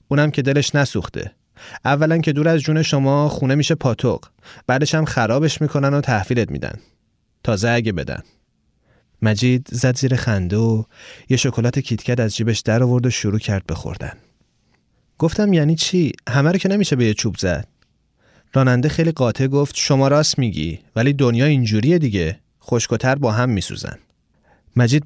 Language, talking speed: Persian, 160 wpm